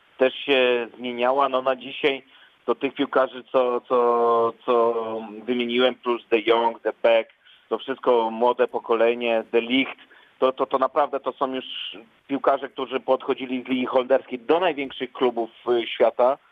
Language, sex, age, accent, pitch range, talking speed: Polish, male, 40-59, native, 120-135 Hz, 150 wpm